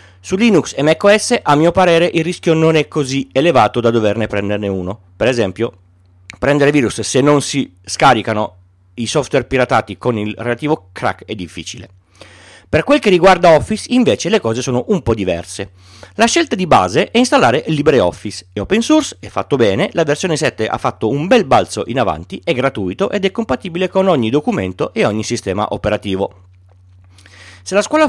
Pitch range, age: 100-160 Hz, 40-59